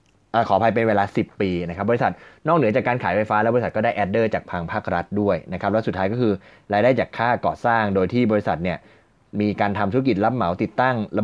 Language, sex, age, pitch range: Thai, male, 20-39, 95-125 Hz